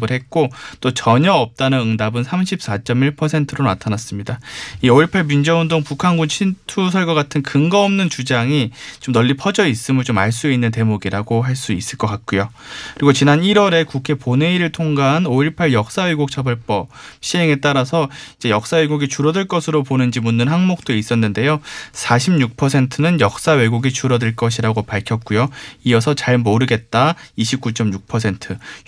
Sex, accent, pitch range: male, native, 115-155 Hz